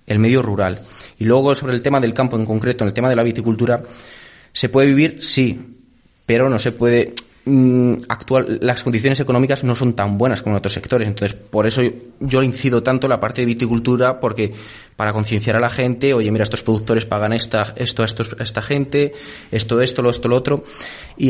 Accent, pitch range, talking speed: Spanish, 110-125 Hz, 205 wpm